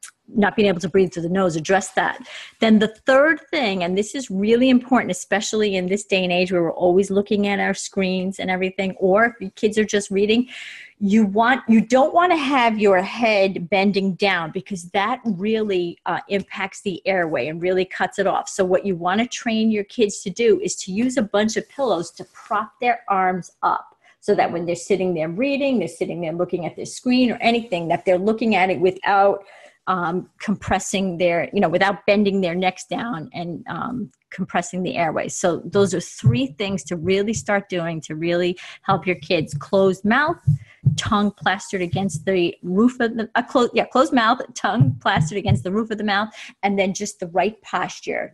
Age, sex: 40-59, female